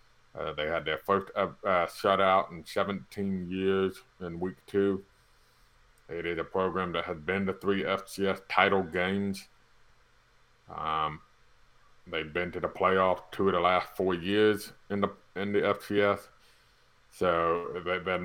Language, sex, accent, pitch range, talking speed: English, male, American, 85-100 Hz, 150 wpm